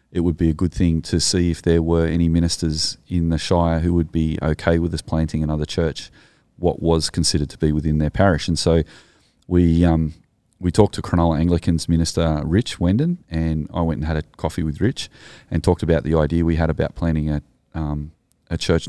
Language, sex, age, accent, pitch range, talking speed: English, male, 30-49, Australian, 80-90 Hz, 215 wpm